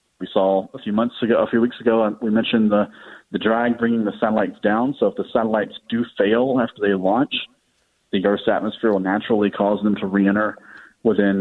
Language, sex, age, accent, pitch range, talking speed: English, male, 40-59, American, 100-125 Hz, 200 wpm